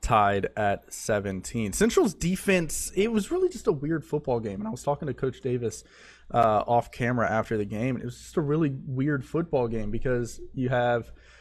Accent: American